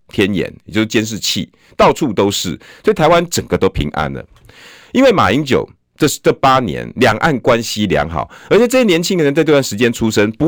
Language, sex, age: Chinese, male, 50-69